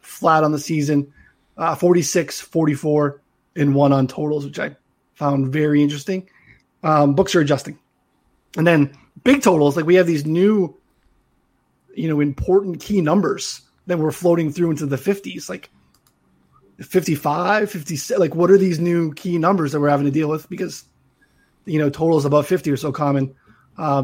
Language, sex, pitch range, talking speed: English, male, 145-180 Hz, 165 wpm